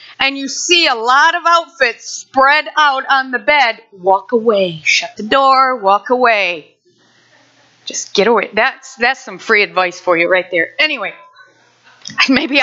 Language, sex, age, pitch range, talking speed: English, female, 40-59, 225-320 Hz, 155 wpm